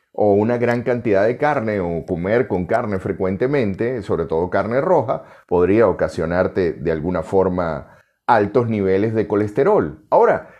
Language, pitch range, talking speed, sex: Spanish, 100-140 Hz, 140 wpm, male